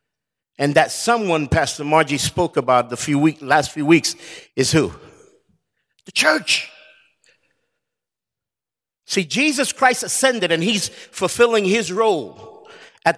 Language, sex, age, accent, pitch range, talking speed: English, male, 50-69, American, 200-260 Hz, 125 wpm